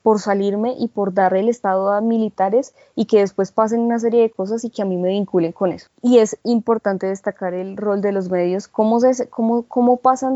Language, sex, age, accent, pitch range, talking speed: Spanish, female, 20-39, Colombian, 195-230 Hz, 225 wpm